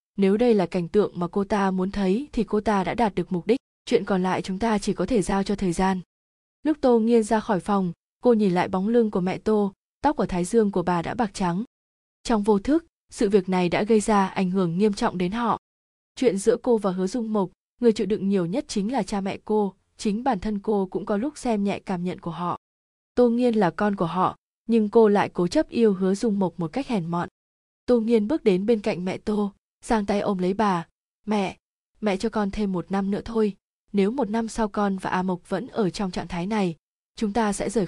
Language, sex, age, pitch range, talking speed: Vietnamese, female, 20-39, 185-225 Hz, 250 wpm